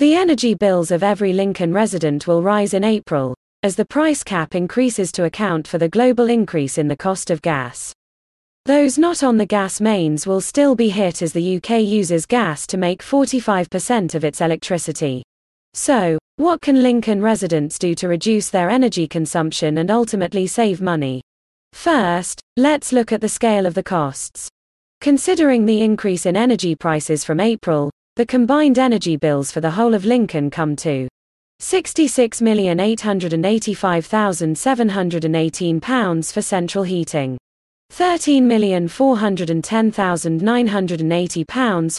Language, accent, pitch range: English, British, 165-230 Hz